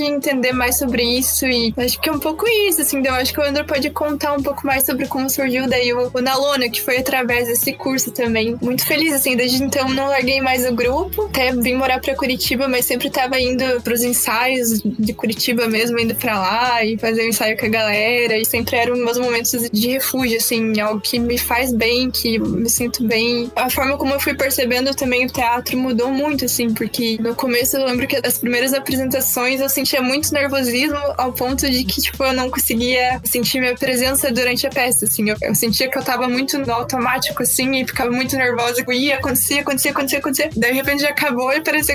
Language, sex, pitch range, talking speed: Portuguese, female, 240-275 Hz, 215 wpm